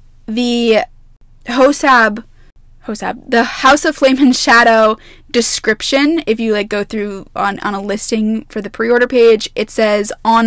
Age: 10-29